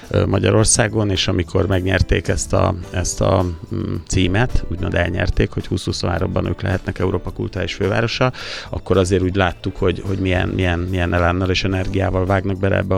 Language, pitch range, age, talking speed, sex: Hungarian, 85-100 Hz, 30-49, 150 wpm, male